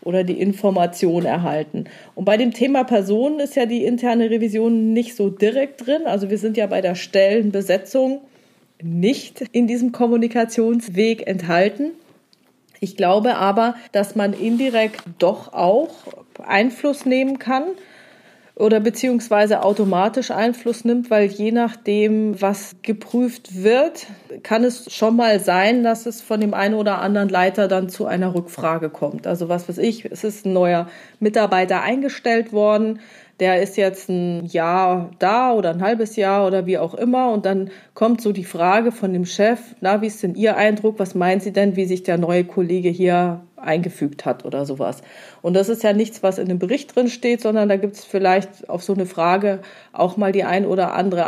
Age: 30-49